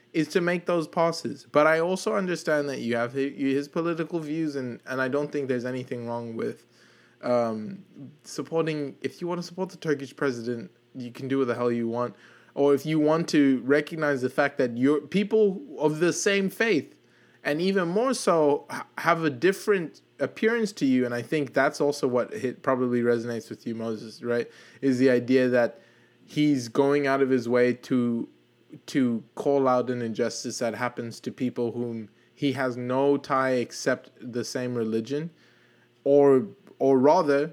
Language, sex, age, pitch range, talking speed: English, male, 20-39, 120-150 Hz, 175 wpm